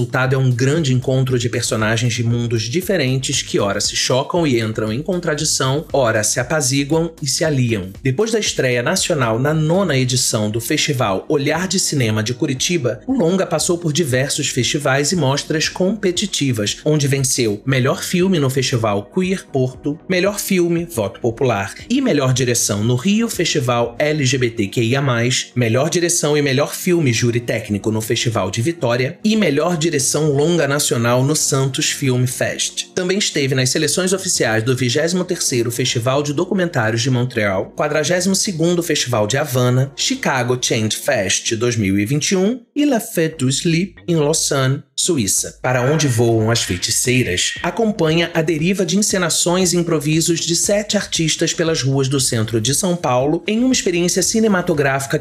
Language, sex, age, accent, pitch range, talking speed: Portuguese, male, 30-49, Brazilian, 125-170 Hz, 155 wpm